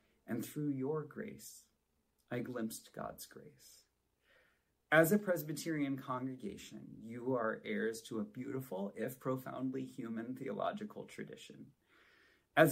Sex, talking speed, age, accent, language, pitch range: male, 115 wpm, 30-49, American, English, 110-150 Hz